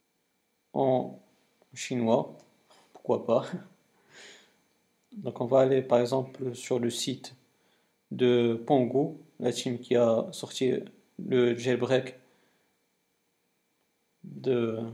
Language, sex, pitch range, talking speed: French, male, 120-140 Hz, 90 wpm